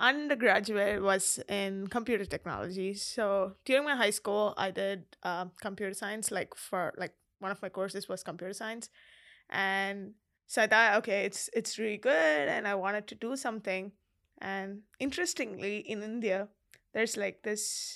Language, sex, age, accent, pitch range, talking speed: English, female, 20-39, Indian, 195-230 Hz, 155 wpm